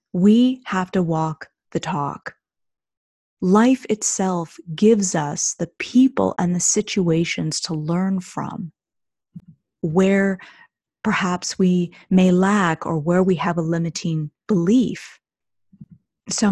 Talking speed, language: 115 wpm, English